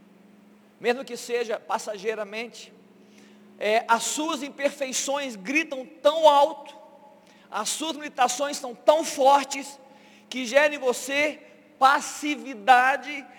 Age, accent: 40-59, Brazilian